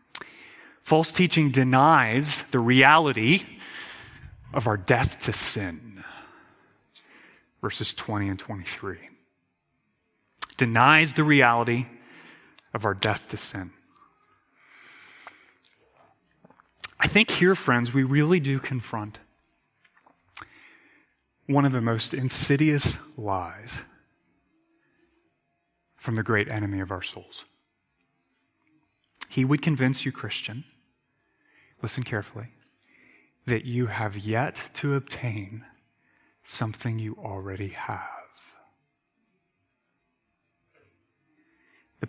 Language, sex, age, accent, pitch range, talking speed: English, male, 30-49, American, 110-140 Hz, 85 wpm